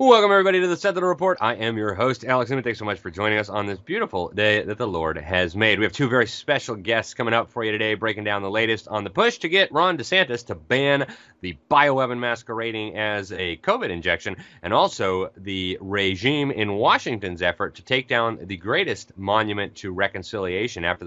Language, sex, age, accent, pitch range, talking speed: English, male, 30-49, American, 100-140 Hz, 210 wpm